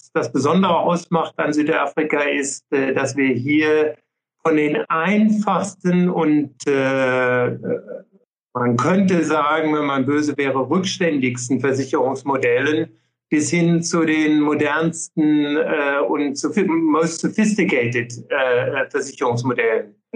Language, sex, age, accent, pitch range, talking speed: German, male, 60-79, German, 140-175 Hz, 90 wpm